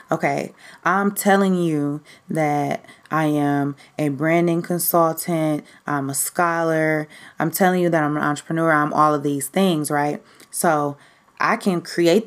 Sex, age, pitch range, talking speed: female, 20-39, 150-175 Hz, 145 wpm